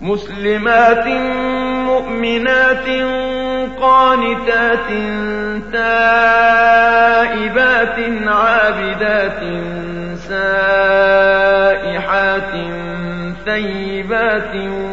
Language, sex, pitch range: Arabic, male, 210-230 Hz